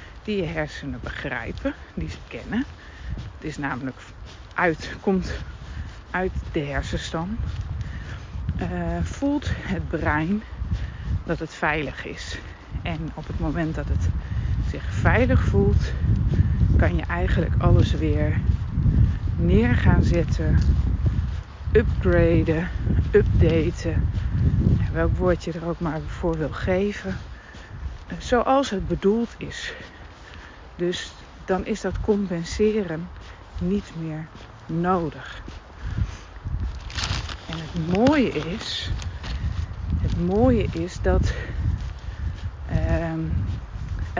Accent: Dutch